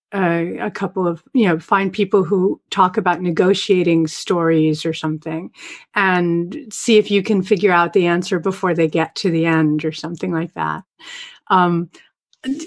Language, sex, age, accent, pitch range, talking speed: English, female, 40-59, American, 180-225 Hz, 165 wpm